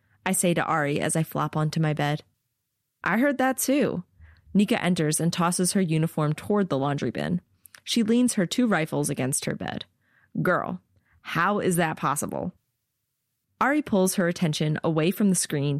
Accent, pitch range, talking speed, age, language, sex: American, 140-190 Hz, 170 wpm, 30-49, English, female